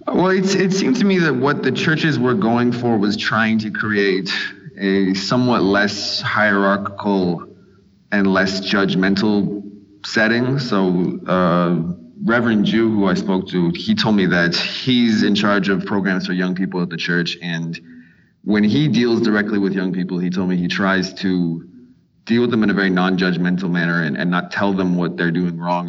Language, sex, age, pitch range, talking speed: English, male, 30-49, 90-115 Hz, 185 wpm